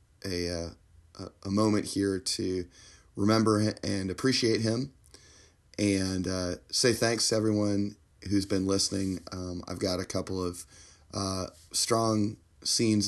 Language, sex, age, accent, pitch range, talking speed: English, male, 30-49, American, 85-100 Hz, 130 wpm